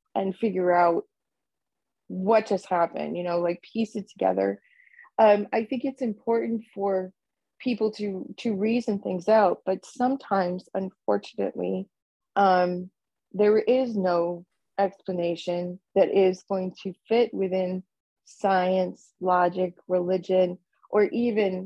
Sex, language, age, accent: female, English, 20-39, American